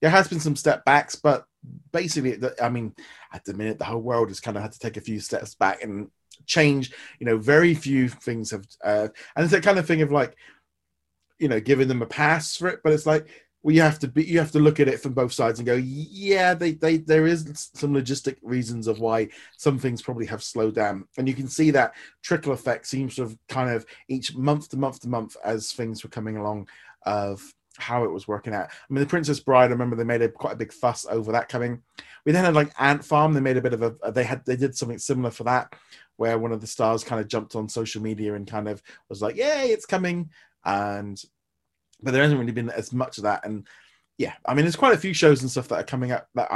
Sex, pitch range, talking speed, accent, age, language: male, 110-150 Hz, 255 wpm, British, 30-49, English